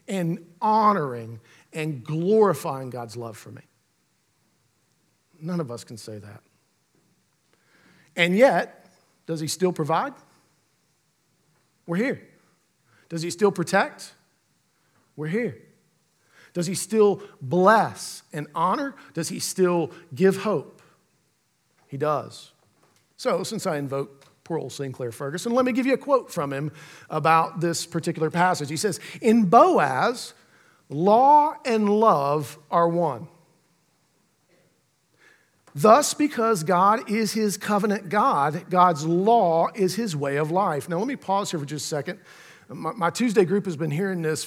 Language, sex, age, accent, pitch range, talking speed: English, male, 50-69, American, 155-205 Hz, 135 wpm